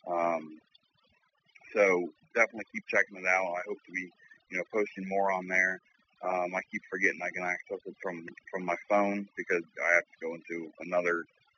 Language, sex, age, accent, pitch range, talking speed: English, male, 30-49, American, 90-105 Hz, 185 wpm